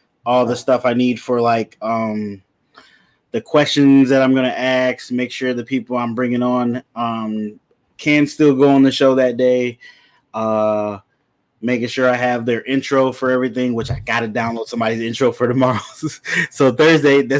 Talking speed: 180 wpm